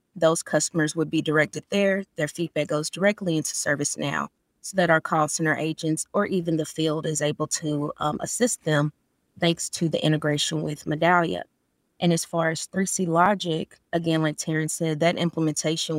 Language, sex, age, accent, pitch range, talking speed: English, female, 20-39, American, 155-170 Hz, 175 wpm